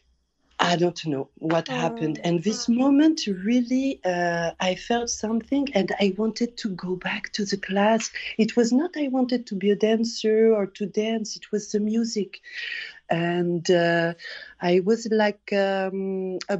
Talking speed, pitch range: 165 wpm, 175-225 Hz